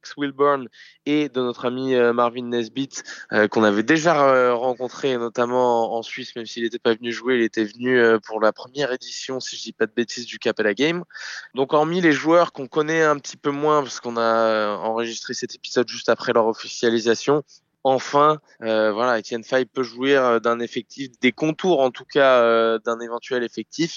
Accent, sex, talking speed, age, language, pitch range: French, male, 195 wpm, 20-39, French, 115-135 Hz